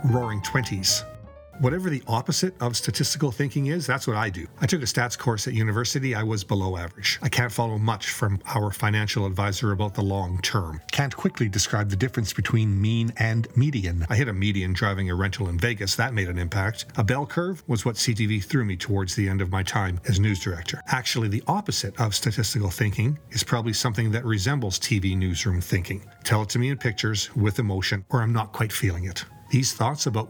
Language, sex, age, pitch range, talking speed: English, male, 40-59, 100-125 Hz, 210 wpm